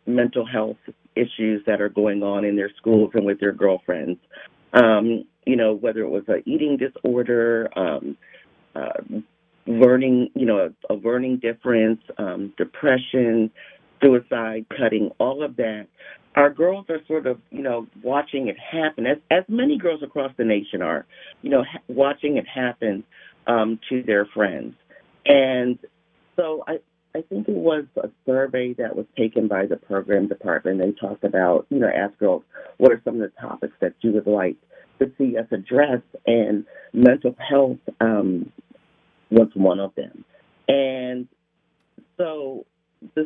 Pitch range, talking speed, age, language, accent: 105-135 Hz, 160 wpm, 40-59, English, American